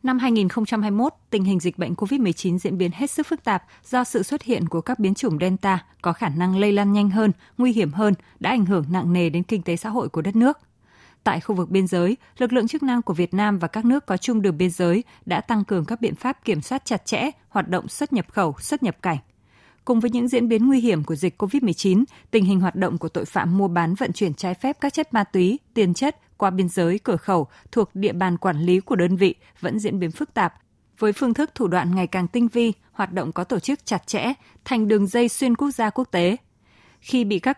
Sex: female